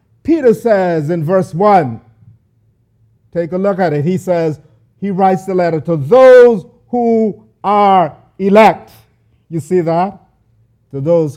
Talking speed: 135 wpm